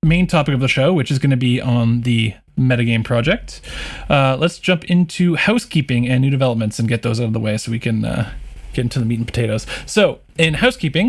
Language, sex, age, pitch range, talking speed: English, male, 20-39, 120-155 Hz, 225 wpm